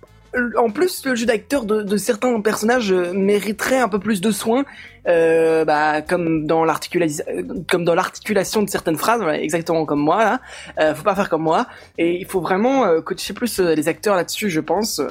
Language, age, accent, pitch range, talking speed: French, 20-39, French, 160-240 Hz, 190 wpm